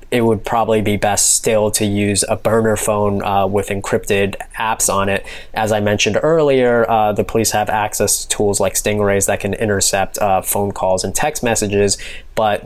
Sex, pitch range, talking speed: male, 100-110 Hz, 190 wpm